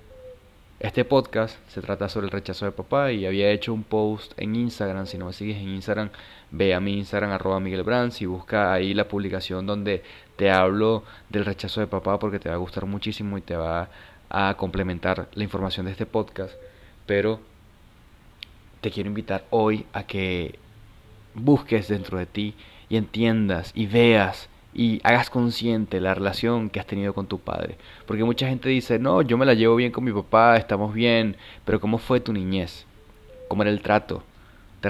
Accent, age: Mexican, 30-49